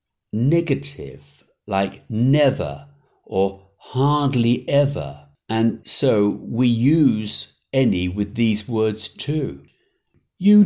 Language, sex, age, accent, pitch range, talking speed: English, male, 60-79, British, 90-135 Hz, 90 wpm